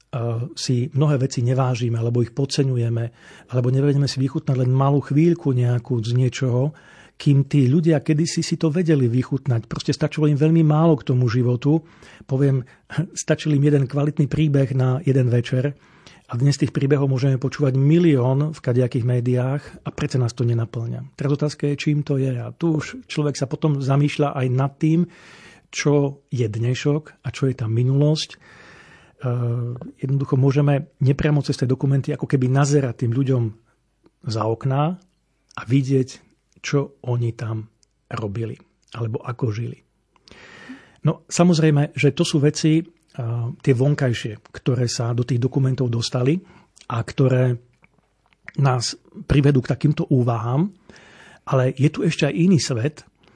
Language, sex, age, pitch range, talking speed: Slovak, male, 40-59, 125-150 Hz, 150 wpm